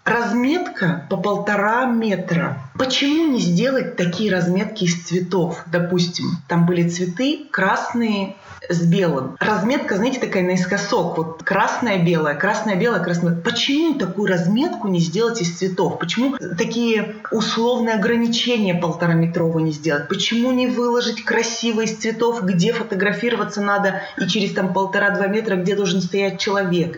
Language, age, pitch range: Russian, 20-39, 180-230 Hz